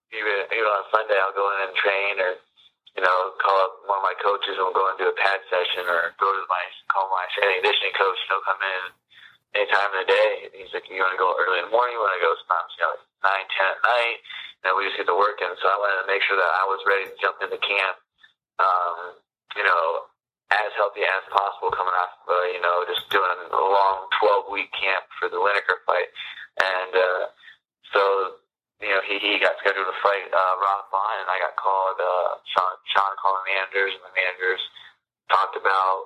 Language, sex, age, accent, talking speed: English, male, 30-49, American, 230 wpm